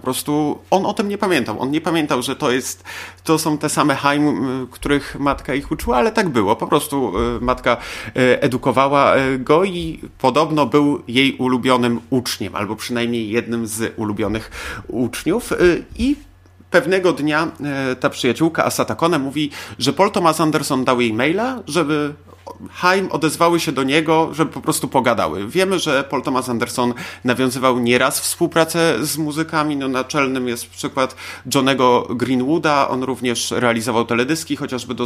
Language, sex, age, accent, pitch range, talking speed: Polish, male, 30-49, native, 120-150 Hz, 150 wpm